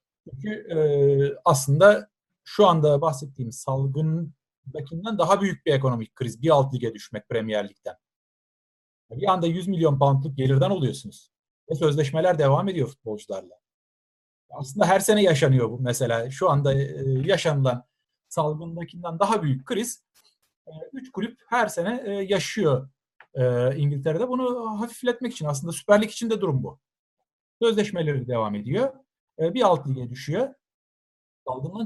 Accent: native